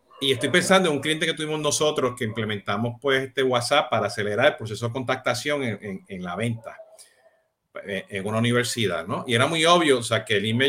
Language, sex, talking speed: Spanish, male, 215 wpm